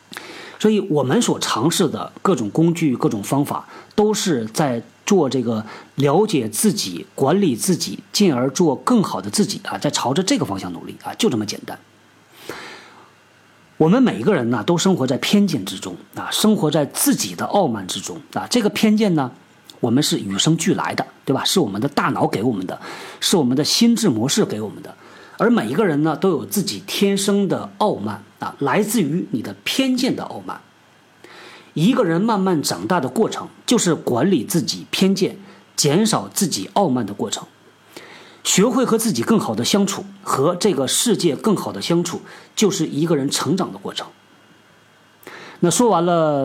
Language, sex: Chinese, male